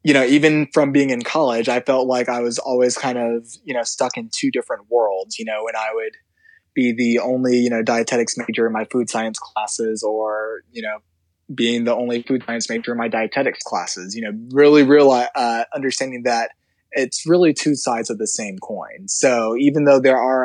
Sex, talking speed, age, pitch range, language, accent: male, 210 wpm, 20-39, 110-135 Hz, English, American